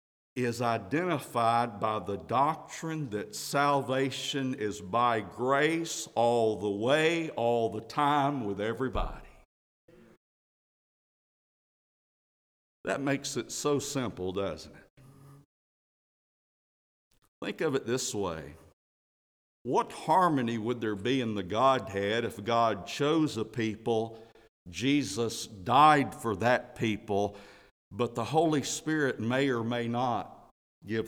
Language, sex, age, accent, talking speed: English, male, 60-79, American, 110 wpm